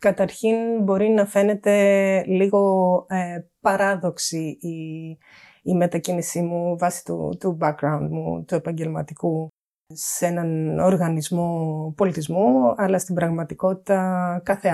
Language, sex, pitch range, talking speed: Greek, female, 160-195 Hz, 105 wpm